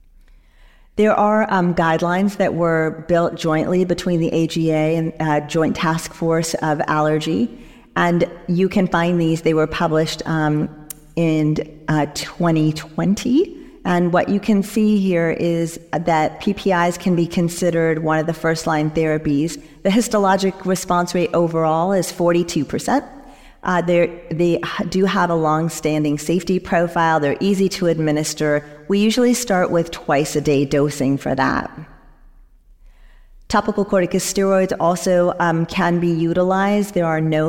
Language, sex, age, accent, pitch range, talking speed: English, female, 40-59, American, 155-180 Hz, 140 wpm